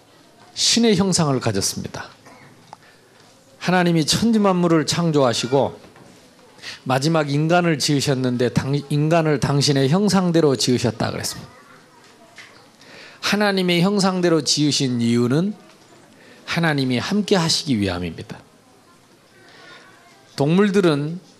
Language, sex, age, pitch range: Korean, male, 40-59, 140-215 Hz